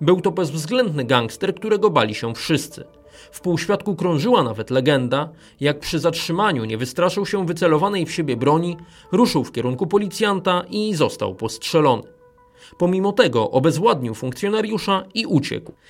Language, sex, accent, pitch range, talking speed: Polish, male, native, 140-195 Hz, 135 wpm